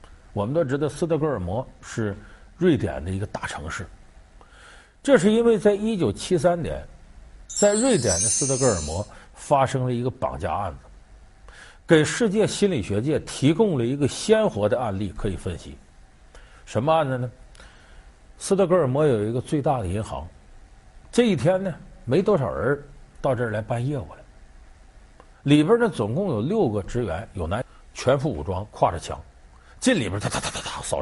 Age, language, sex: 50-69, Chinese, male